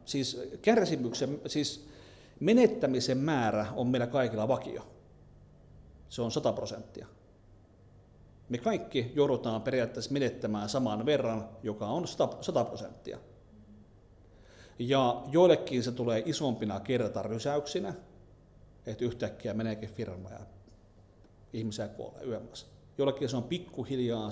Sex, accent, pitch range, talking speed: male, native, 105-130 Hz, 100 wpm